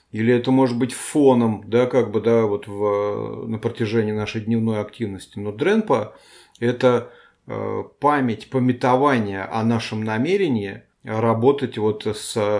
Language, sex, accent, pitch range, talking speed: Russian, male, native, 110-135 Hz, 95 wpm